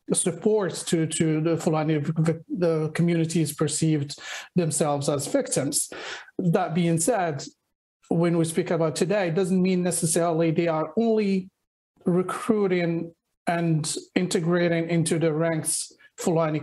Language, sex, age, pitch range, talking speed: English, male, 40-59, 160-180 Hz, 120 wpm